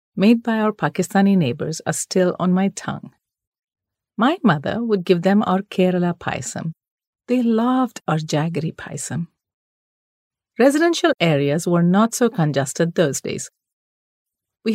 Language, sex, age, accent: English, female, 40-59, Indian